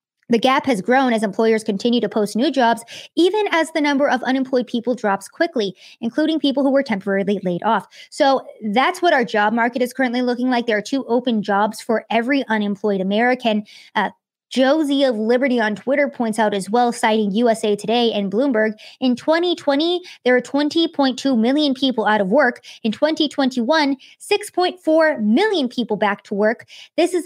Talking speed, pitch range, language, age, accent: 180 wpm, 230-300 Hz, English, 20-39, American